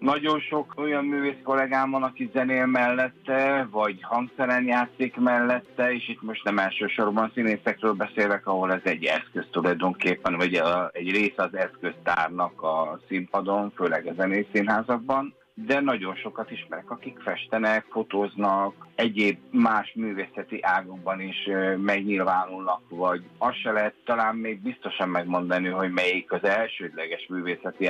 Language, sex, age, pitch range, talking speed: Hungarian, male, 50-69, 95-125 Hz, 130 wpm